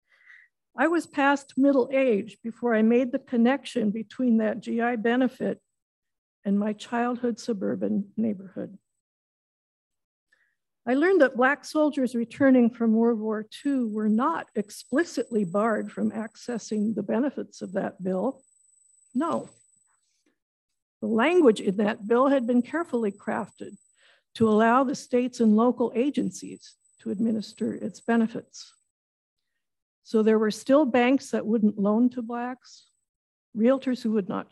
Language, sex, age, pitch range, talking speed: English, female, 60-79, 215-255 Hz, 130 wpm